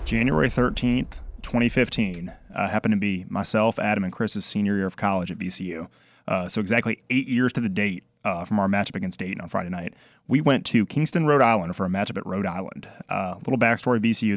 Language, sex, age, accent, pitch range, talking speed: English, male, 30-49, American, 100-125 Hz, 215 wpm